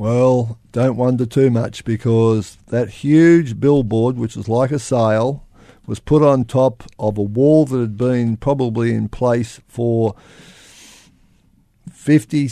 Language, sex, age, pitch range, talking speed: English, male, 50-69, 115-140 Hz, 140 wpm